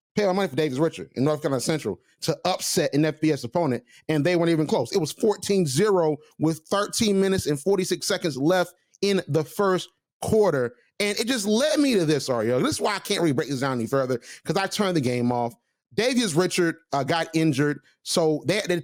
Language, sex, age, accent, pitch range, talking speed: English, male, 30-49, American, 145-185 Hz, 210 wpm